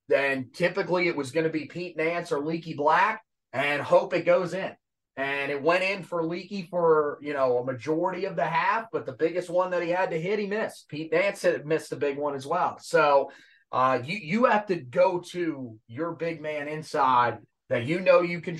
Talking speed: 220 wpm